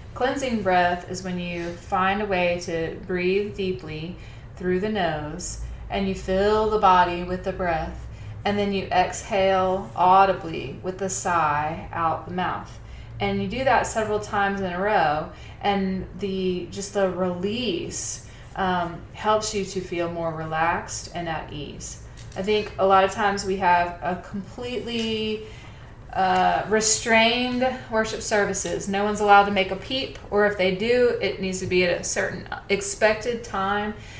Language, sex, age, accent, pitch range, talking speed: English, female, 20-39, American, 170-200 Hz, 160 wpm